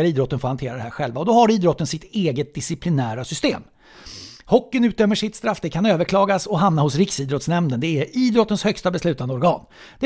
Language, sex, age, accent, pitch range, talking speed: English, male, 60-79, Swedish, 145-200 Hz, 190 wpm